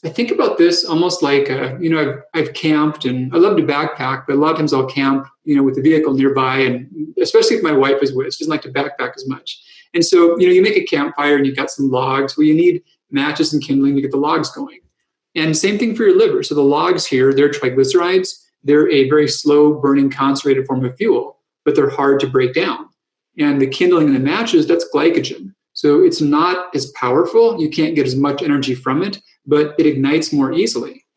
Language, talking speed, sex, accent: English, 235 wpm, male, American